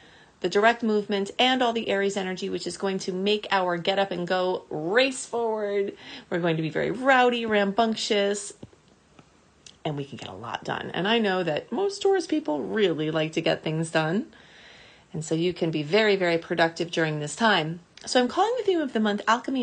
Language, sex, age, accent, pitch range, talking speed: English, female, 30-49, American, 185-230 Hz, 205 wpm